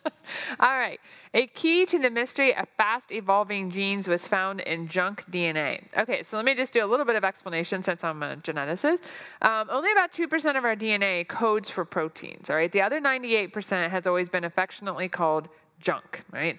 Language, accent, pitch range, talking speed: English, American, 175-225 Hz, 190 wpm